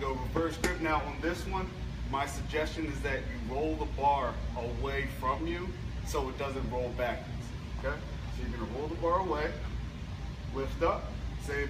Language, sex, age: English, male, 30-49